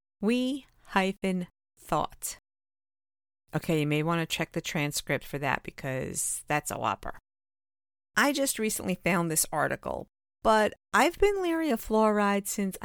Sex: female